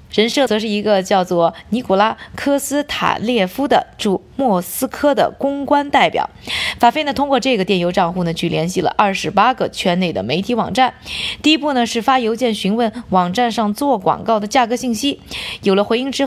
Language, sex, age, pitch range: Chinese, female, 20-39, 185-265 Hz